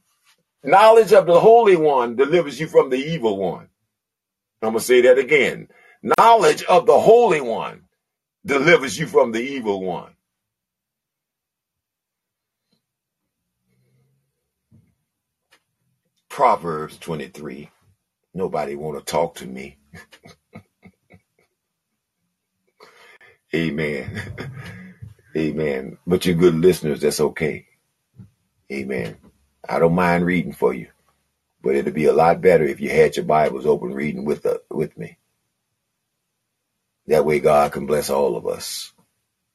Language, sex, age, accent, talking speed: English, male, 50-69, American, 115 wpm